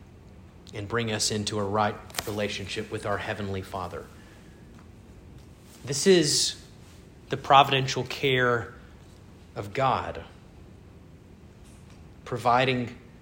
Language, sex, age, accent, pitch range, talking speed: English, male, 30-49, American, 100-145 Hz, 85 wpm